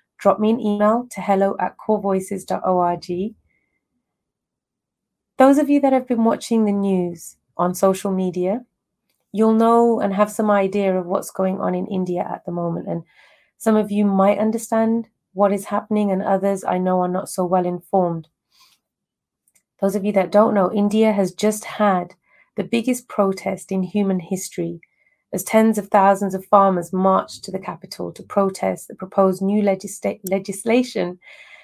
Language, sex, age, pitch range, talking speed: English, female, 30-49, 185-215 Hz, 160 wpm